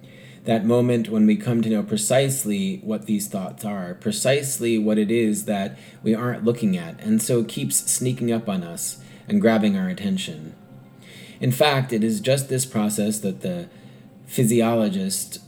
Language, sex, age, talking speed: English, male, 30-49, 165 wpm